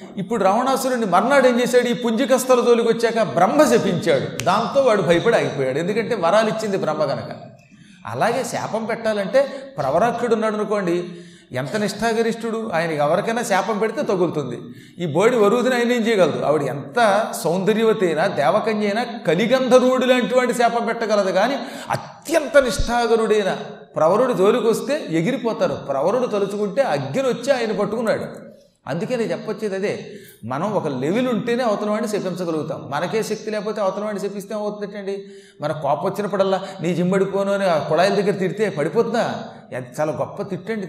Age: 40-59